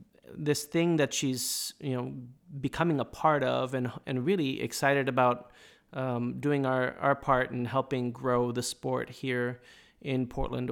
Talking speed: 155 wpm